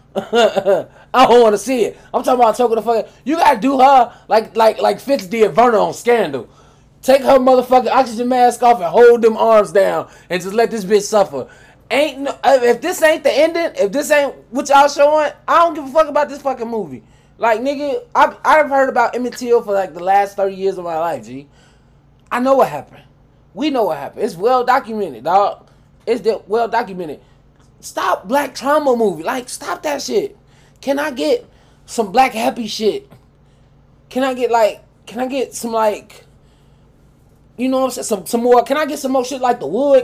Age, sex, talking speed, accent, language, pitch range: 20-39, male, 210 wpm, American, English, 190-265 Hz